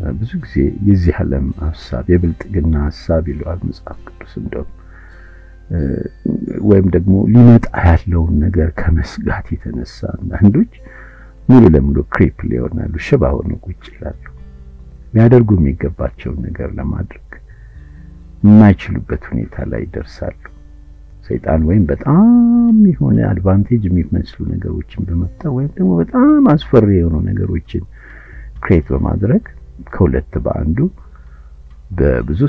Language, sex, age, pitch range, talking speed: Amharic, male, 60-79, 75-105 Hz, 75 wpm